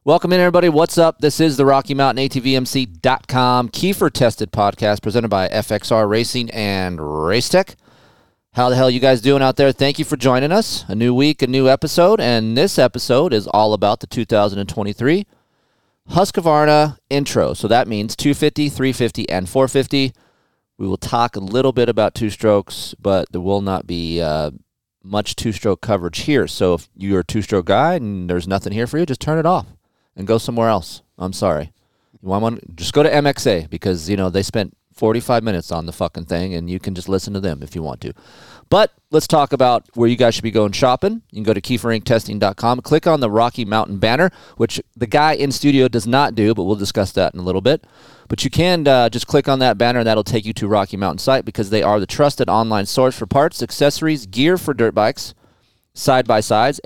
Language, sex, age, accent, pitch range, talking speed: English, male, 30-49, American, 100-135 Hz, 210 wpm